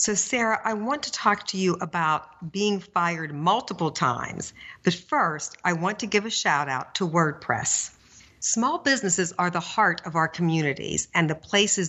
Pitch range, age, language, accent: 165-215 Hz, 50-69, English, American